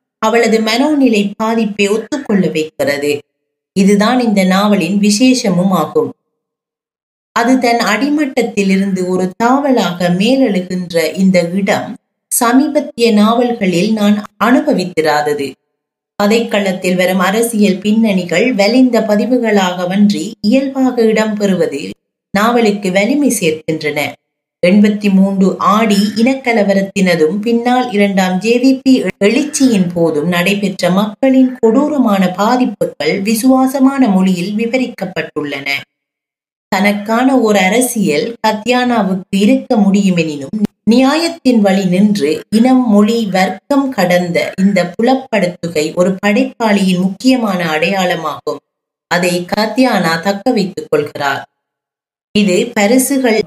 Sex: female